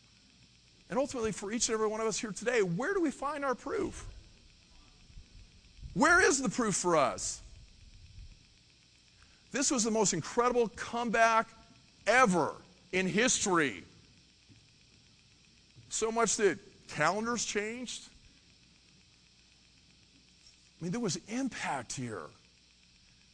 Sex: male